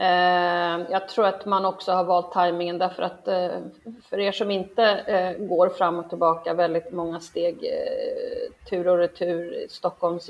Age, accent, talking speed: 30-49, native, 145 wpm